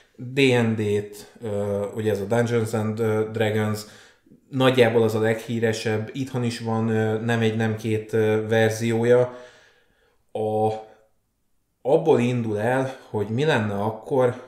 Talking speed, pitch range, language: 110 wpm, 110-125 Hz, Hungarian